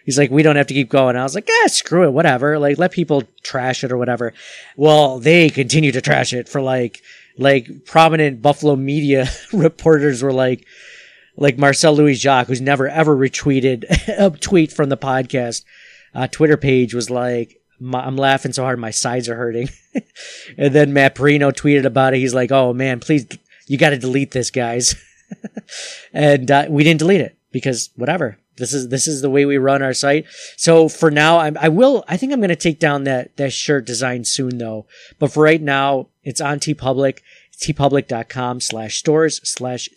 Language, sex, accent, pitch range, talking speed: English, male, American, 130-155 Hz, 195 wpm